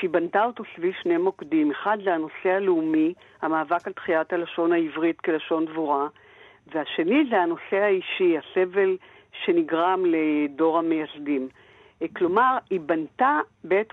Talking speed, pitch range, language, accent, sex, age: 125 wpm, 165-225 Hz, Hebrew, native, female, 60-79